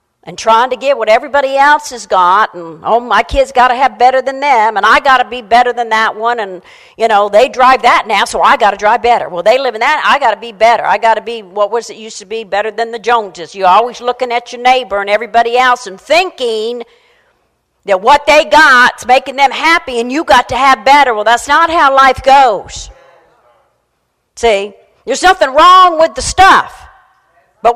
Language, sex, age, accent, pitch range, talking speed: English, female, 50-69, American, 220-280 Hz, 225 wpm